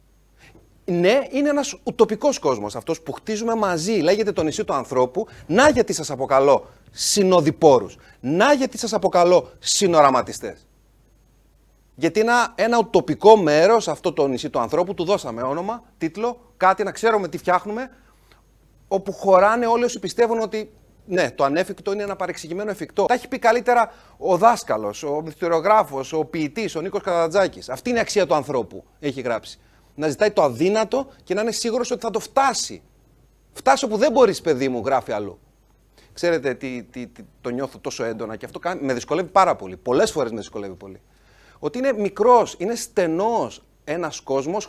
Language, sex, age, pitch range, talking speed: Greek, male, 30-49, 150-225 Hz, 165 wpm